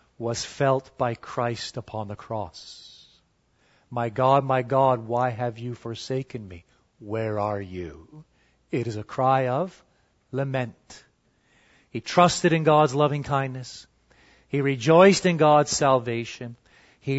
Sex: male